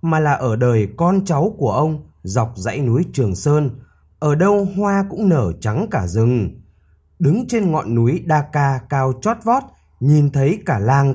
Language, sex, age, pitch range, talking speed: Vietnamese, male, 20-39, 110-170 Hz, 185 wpm